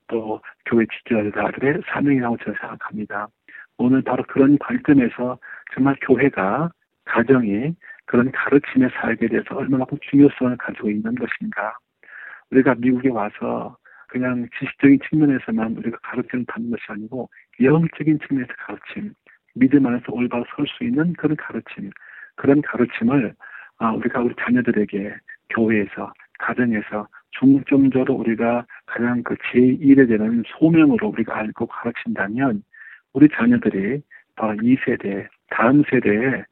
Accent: native